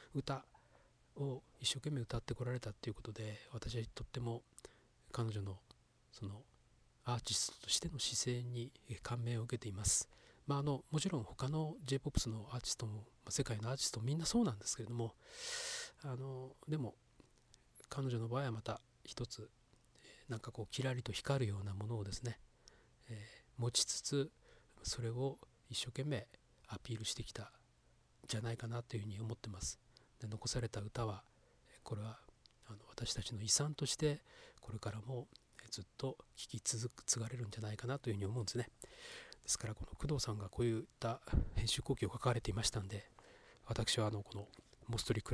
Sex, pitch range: male, 110-130 Hz